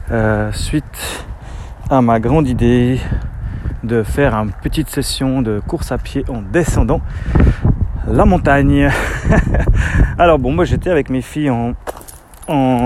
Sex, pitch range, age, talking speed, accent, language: male, 110-140 Hz, 30-49, 130 wpm, French, French